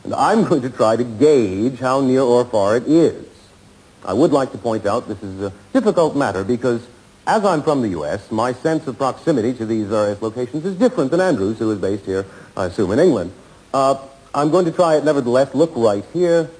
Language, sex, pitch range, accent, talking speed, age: English, male, 110-155 Hz, American, 215 wpm, 50-69